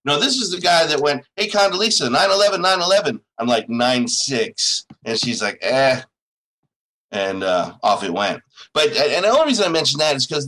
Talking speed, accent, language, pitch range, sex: 205 wpm, American, English, 140-225 Hz, male